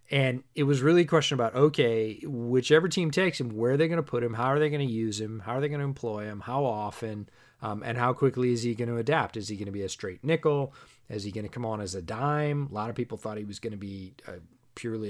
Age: 30-49